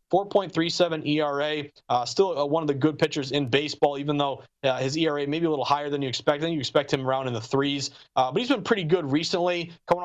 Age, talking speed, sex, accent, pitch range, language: 30-49, 250 wpm, male, American, 140-180 Hz, English